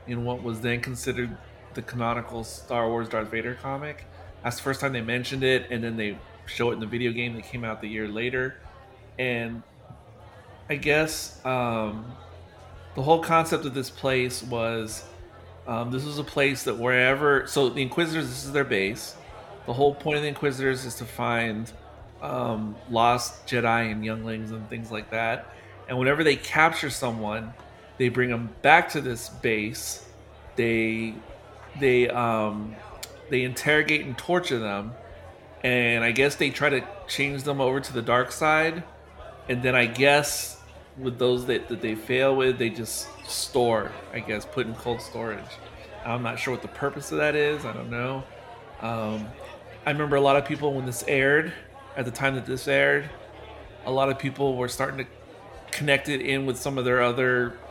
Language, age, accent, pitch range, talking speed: English, 30-49, American, 110-135 Hz, 180 wpm